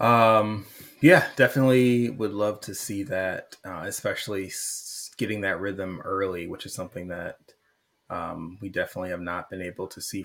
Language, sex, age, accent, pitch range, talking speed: English, male, 20-39, American, 95-125 Hz, 160 wpm